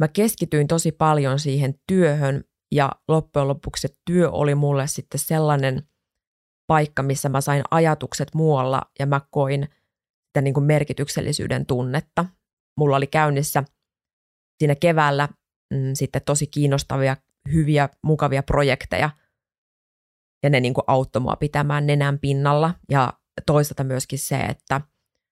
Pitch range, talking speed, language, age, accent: 140-170 Hz, 115 wpm, Finnish, 30-49, native